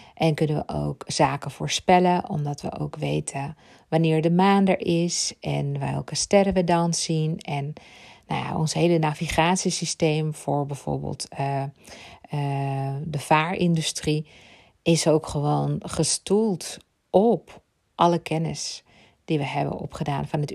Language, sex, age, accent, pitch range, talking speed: Dutch, female, 40-59, Dutch, 145-170 Hz, 135 wpm